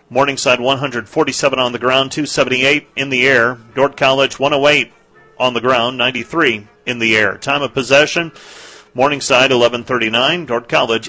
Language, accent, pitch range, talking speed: English, American, 120-140 Hz, 140 wpm